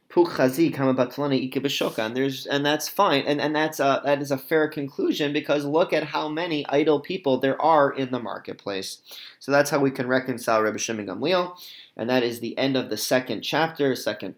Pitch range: 115-145 Hz